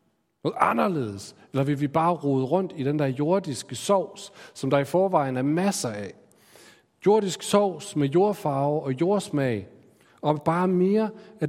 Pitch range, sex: 120-175 Hz, male